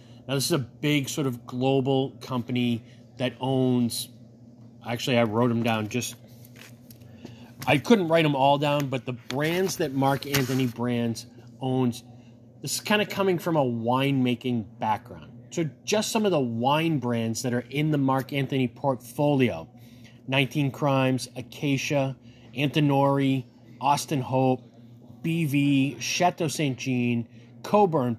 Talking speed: 140 wpm